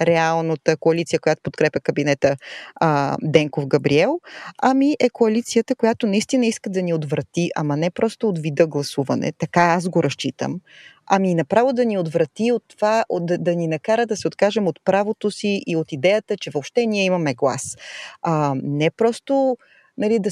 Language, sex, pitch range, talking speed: Bulgarian, female, 160-220 Hz, 165 wpm